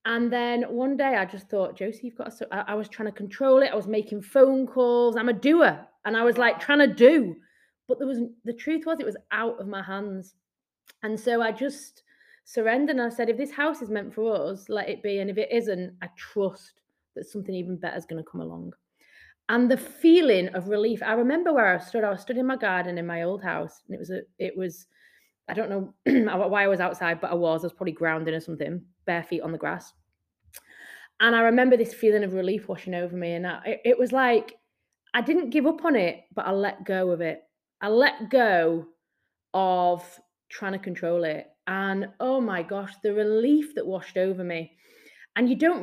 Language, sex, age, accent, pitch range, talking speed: English, female, 20-39, British, 185-245 Hz, 225 wpm